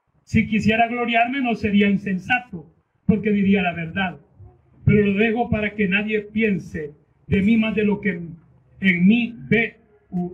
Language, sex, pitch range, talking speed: Spanish, male, 165-210 Hz, 155 wpm